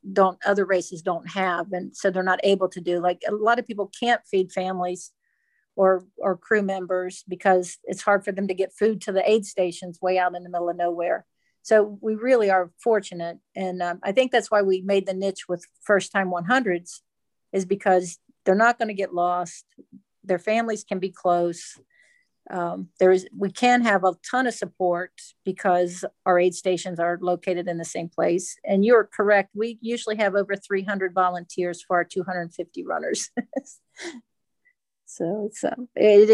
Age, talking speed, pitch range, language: 50-69, 185 wpm, 180-205 Hz, English